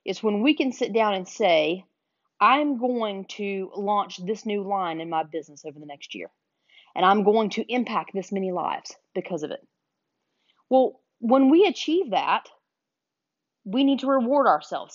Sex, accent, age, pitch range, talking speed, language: female, American, 30-49, 190-245 Hz, 175 wpm, English